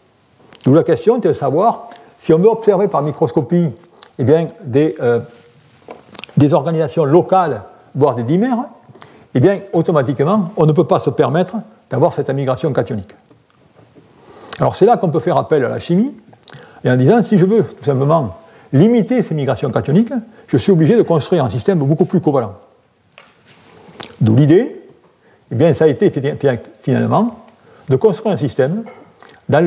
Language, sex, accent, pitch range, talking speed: French, male, French, 140-200 Hz, 150 wpm